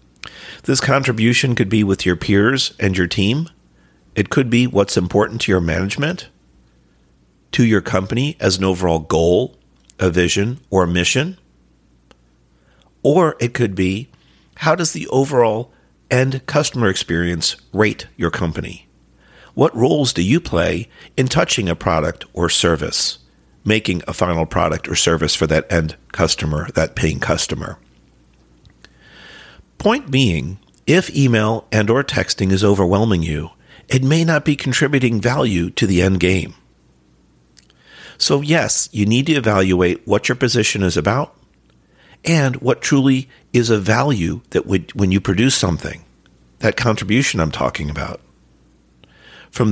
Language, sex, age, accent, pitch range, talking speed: English, male, 50-69, American, 75-125 Hz, 140 wpm